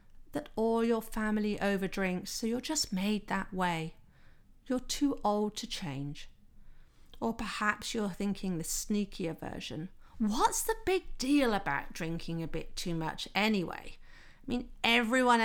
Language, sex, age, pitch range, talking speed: English, female, 40-59, 185-285 Hz, 150 wpm